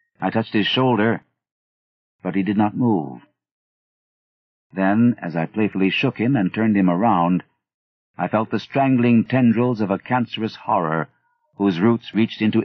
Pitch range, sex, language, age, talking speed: 90-110 Hz, male, English, 50-69, 150 wpm